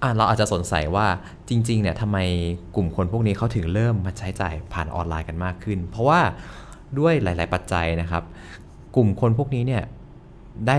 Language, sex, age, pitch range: Thai, male, 20-39, 85-110 Hz